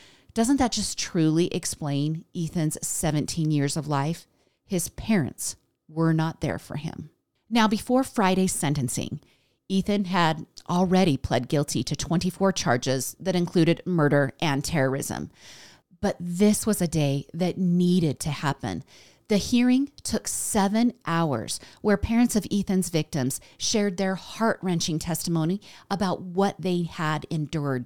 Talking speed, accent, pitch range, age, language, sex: 135 wpm, American, 150-200 Hz, 40-59, English, female